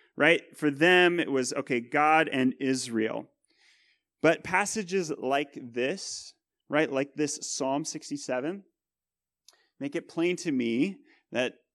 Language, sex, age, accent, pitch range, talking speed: English, male, 30-49, American, 125-185 Hz, 125 wpm